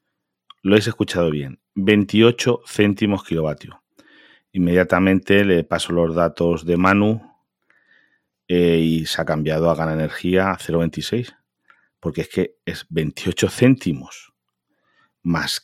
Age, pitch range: 40-59, 80-95 Hz